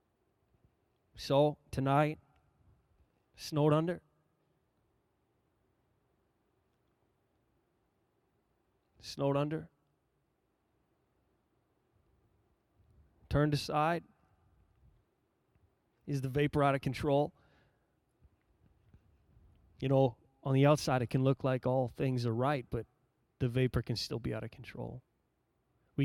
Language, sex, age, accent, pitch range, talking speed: English, male, 20-39, American, 110-135 Hz, 85 wpm